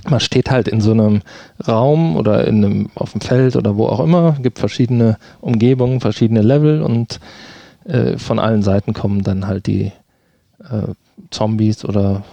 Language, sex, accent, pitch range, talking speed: German, male, German, 105-120 Hz, 160 wpm